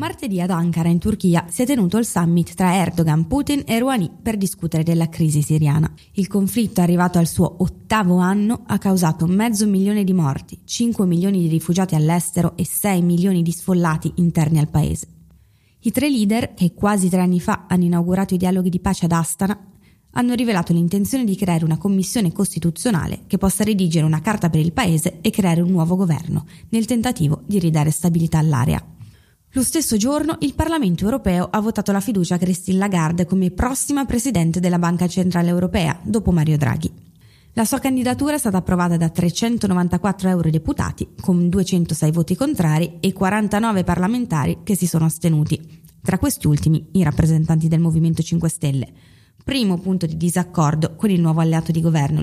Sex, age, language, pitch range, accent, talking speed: female, 20-39, Italian, 165-205 Hz, native, 175 wpm